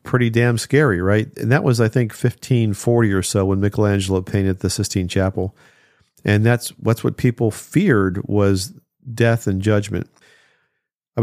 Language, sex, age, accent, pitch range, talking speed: English, male, 50-69, American, 100-125 Hz, 160 wpm